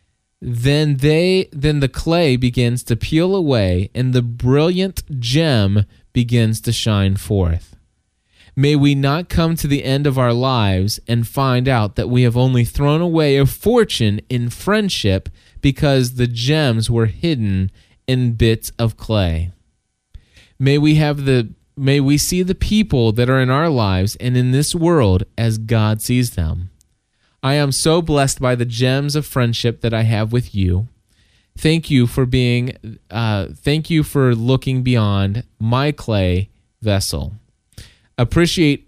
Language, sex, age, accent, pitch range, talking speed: English, male, 20-39, American, 105-140 Hz, 155 wpm